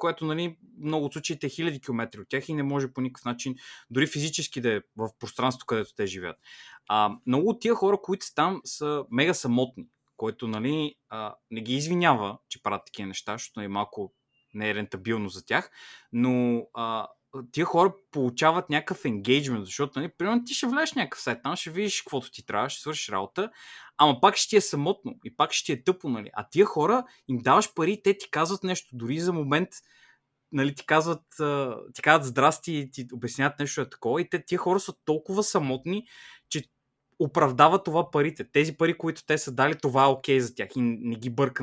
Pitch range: 125-170 Hz